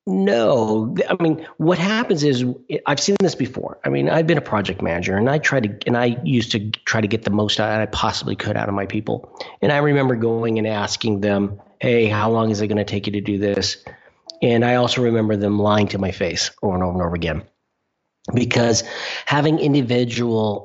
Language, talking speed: English, 220 wpm